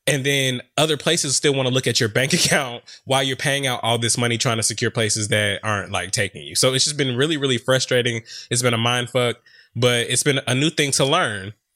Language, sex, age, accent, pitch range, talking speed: English, male, 20-39, American, 115-145 Hz, 245 wpm